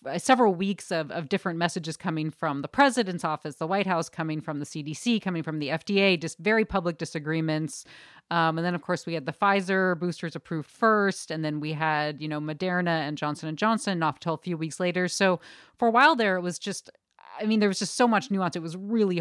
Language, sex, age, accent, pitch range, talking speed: English, female, 30-49, American, 155-200 Hz, 230 wpm